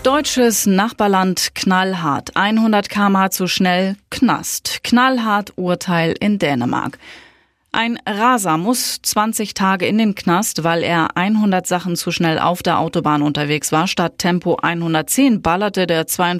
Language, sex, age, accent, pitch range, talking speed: German, female, 30-49, German, 165-205 Hz, 130 wpm